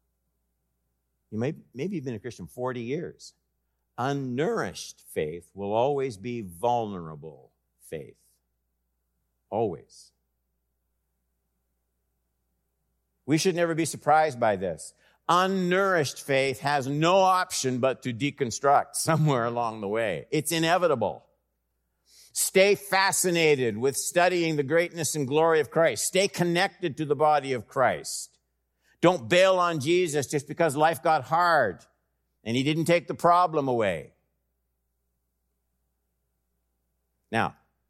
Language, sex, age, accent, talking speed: English, male, 50-69, American, 115 wpm